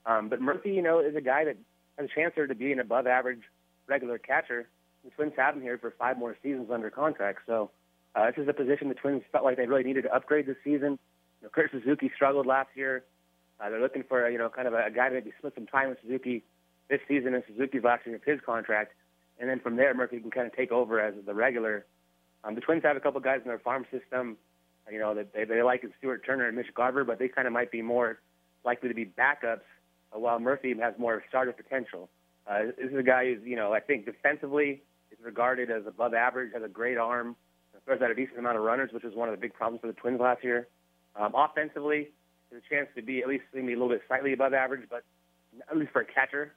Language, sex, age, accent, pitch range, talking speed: English, male, 30-49, American, 110-135 Hz, 250 wpm